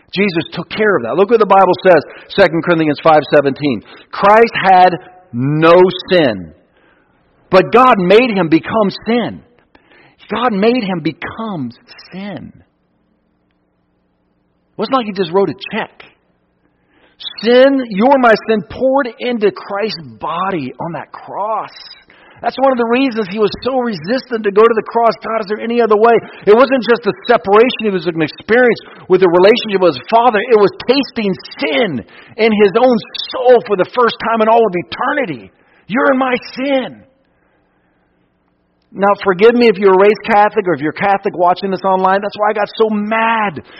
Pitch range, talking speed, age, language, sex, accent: 180-230 Hz, 170 wpm, 50-69, English, male, American